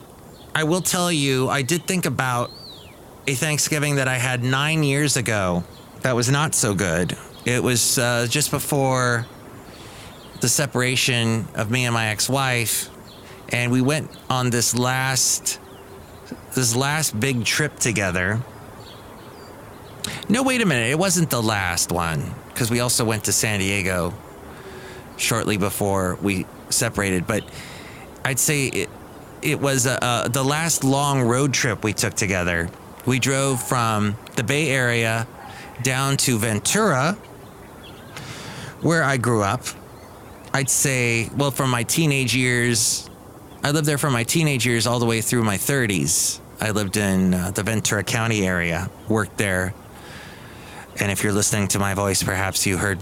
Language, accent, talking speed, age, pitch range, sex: English, American, 150 wpm, 30-49, 100-135 Hz, male